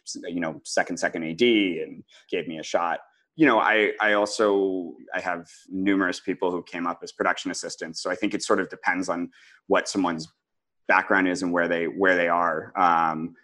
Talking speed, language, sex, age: 195 wpm, English, male, 30-49